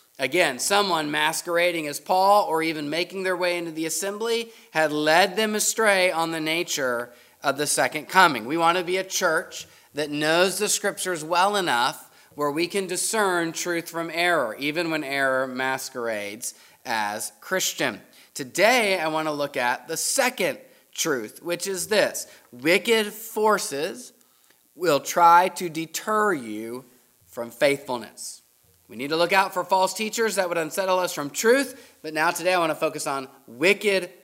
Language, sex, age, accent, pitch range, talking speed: English, male, 30-49, American, 145-195 Hz, 165 wpm